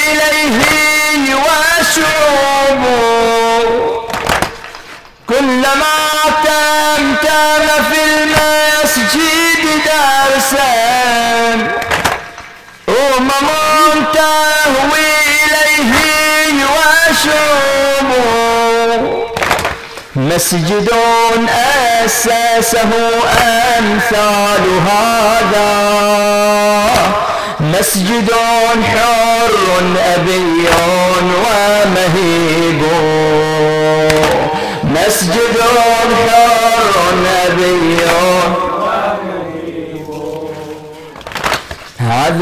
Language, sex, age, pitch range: Arabic, male, 40-59, 205-270 Hz